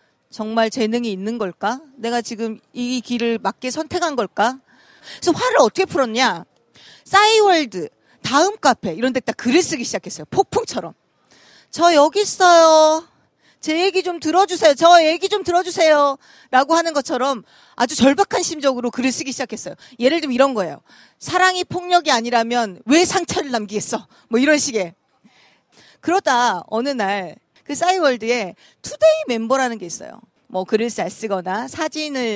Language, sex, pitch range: Korean, female, 220-305 Hz